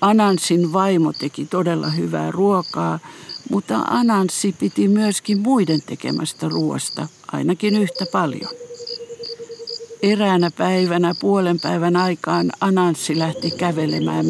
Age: 60-79